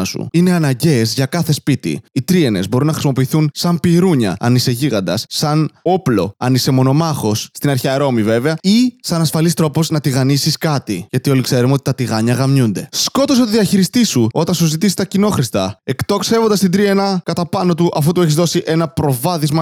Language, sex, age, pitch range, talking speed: Greek, male, 20-39, 135-175 Hz, 180 wpm